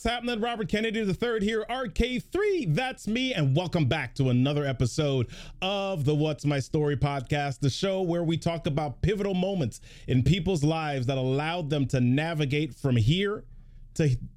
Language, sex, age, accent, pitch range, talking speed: English, male, 30-49, American, 130-185 Hz, 170 wpm